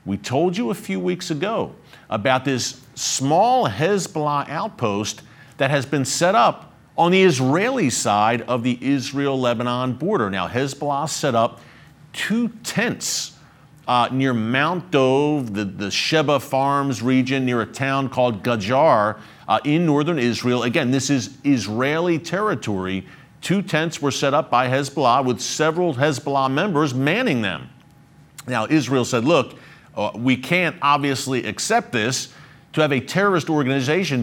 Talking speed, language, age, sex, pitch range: 145 wpm, English, 50-69, male, 125-155 Hz